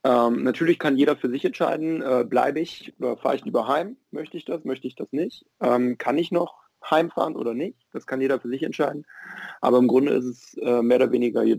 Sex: male